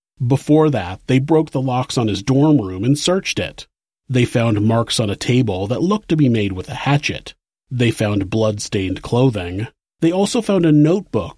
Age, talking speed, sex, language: 40-59, 190 wpm, male, English